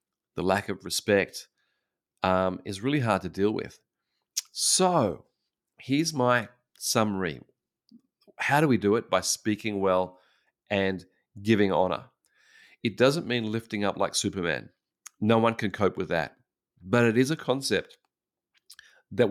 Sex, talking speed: male, 140 wpm